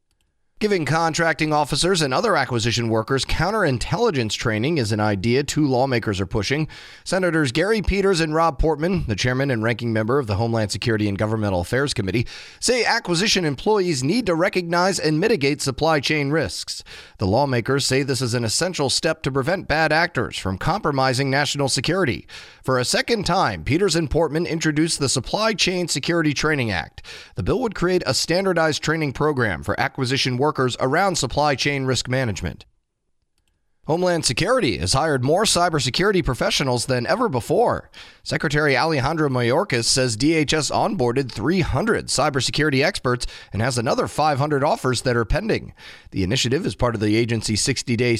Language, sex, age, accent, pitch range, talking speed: English, male, 30-49, American, 120-160 Hz, 160 wpm